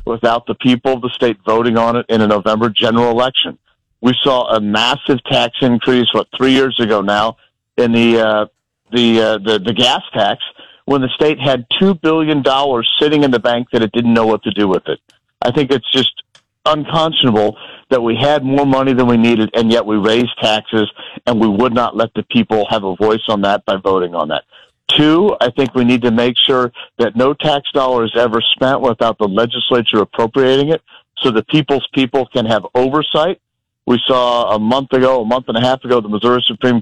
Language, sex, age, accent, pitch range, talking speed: English, male, 50-69, American, 115-130 Hz, 205 wpm